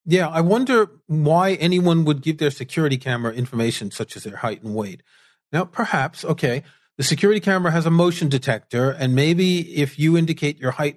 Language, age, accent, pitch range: English, 40-59, American, 125-165 Hz